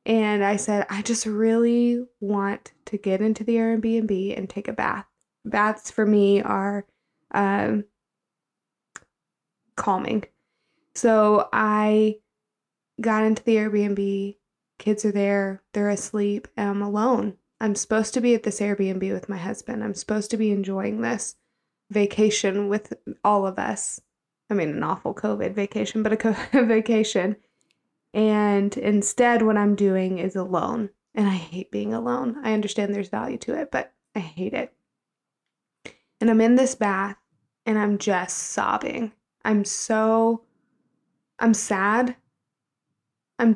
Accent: American